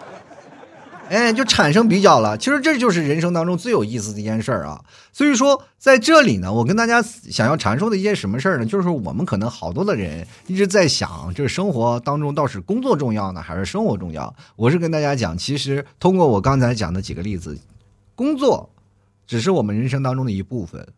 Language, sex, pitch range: Chinese, male, 95-155 Hz